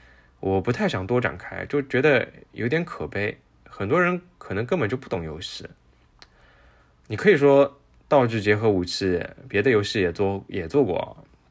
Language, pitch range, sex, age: Chinese, 90-125 Hz, male, 20-39